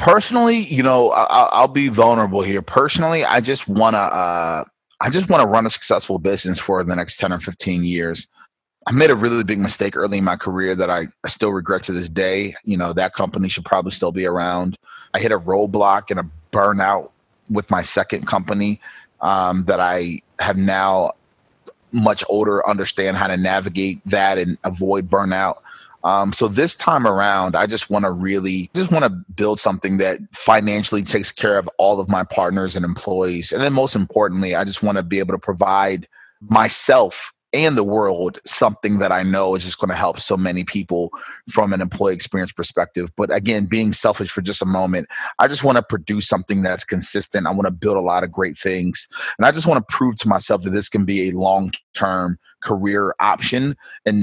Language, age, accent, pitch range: English, 30-49, American, 95-105 Hz